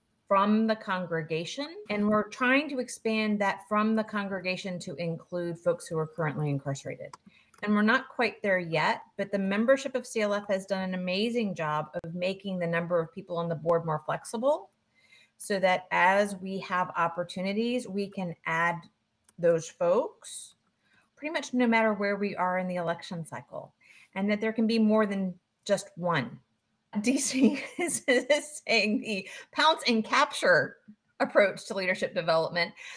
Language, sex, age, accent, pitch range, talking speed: English, female, 30-49, American, 170-220 Hz, 160 wpm